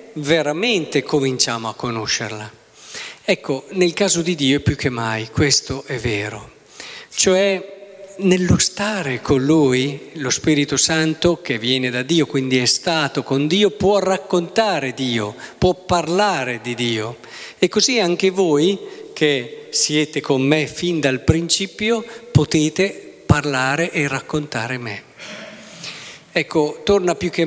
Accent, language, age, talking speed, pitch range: native, Italian, 50-69, 130 wpm, 135-175 Hz